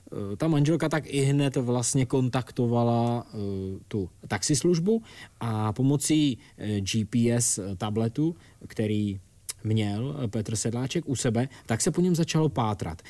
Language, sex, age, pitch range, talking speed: Czech, male, 20-39, 110-150 Hz, 115 wpm